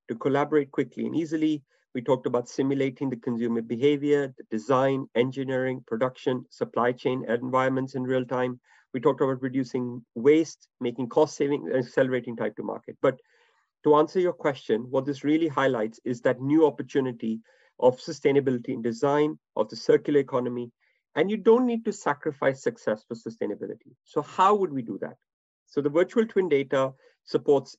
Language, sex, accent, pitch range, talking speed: English, male, Indian, 130-160 Hz, 165 wpm